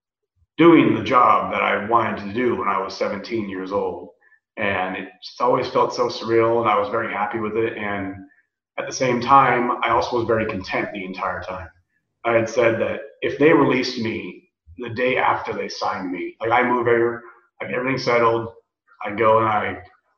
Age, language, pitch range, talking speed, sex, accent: 30-49, English, 110-130 Hz, 200 wpm, male, American